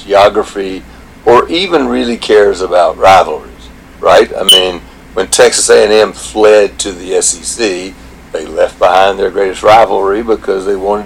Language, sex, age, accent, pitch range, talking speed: English, male, 60-79, American, 95-125 Hz, 140 wpm